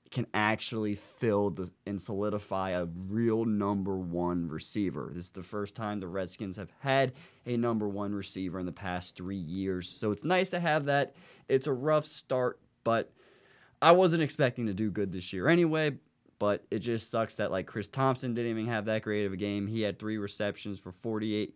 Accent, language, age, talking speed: American, English, 20-39, 200 wpm